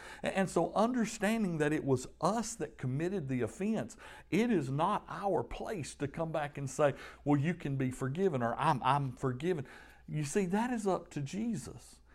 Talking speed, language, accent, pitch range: 185 wpm, English, American, 115-160 Hz